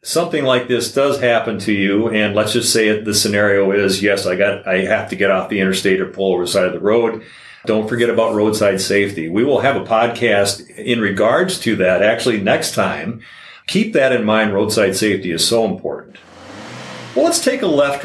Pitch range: 100-130 Hz